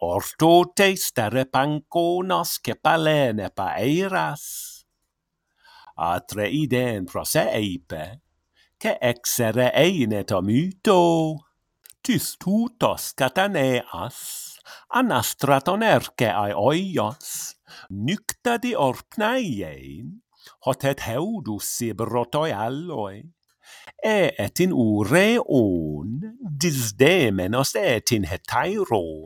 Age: 50-69